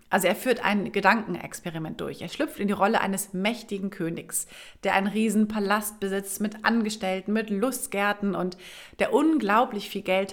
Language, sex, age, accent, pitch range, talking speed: German, female, 30-49, German, 195-235 Hz, 165 wpm